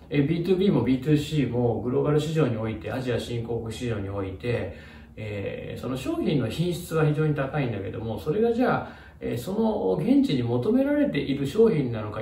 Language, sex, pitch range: Japanese, male, 105-150 Hz